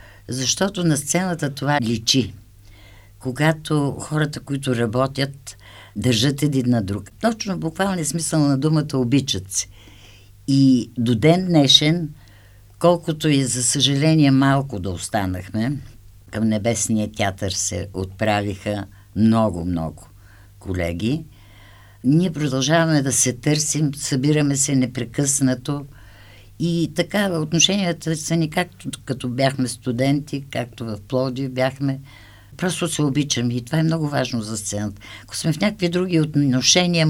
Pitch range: 105-150 Hz